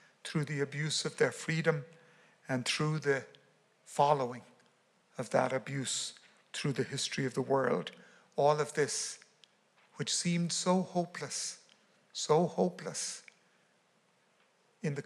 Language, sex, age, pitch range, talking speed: English, male, 60-79, 145-160 Hz, 120 wpm